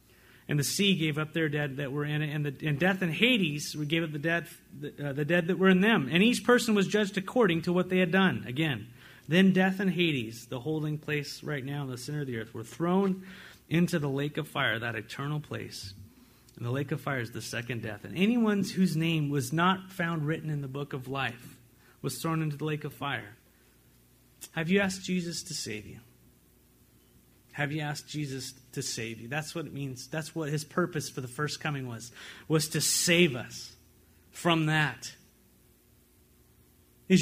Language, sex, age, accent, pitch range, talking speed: English, male, 30-49, American, 130-180 Hz, 205 wpm